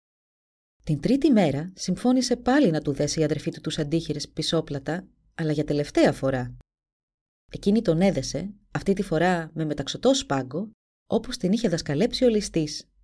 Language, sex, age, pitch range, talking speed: Greek, female, 20-39, 150-205 Hz, 150 wpm